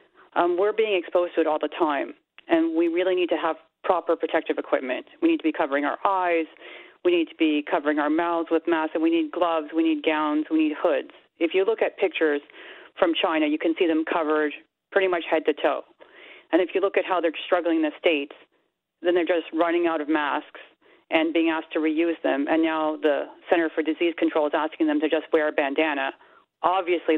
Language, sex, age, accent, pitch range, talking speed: English, female, 40-59, American, 155-195 Hz, 225 wpm